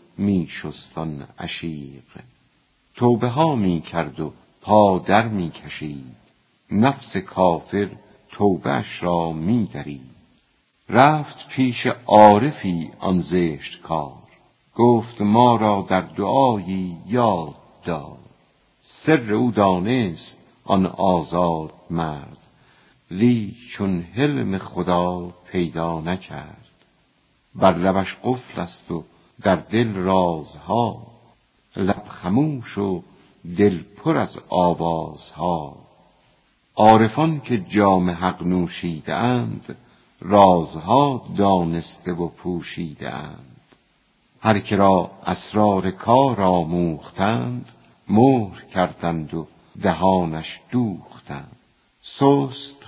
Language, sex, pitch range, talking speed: Persian, female, 85-120 Hz, 85 wpm